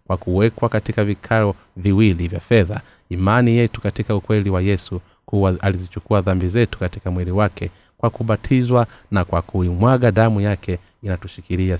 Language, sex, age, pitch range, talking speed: Swahili, male, 30-49, 90-115 Hz, 140 wpm